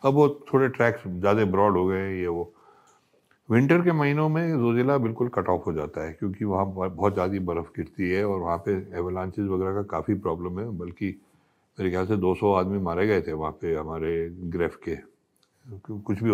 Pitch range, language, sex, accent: 100-140 Hz, Hindi, male, native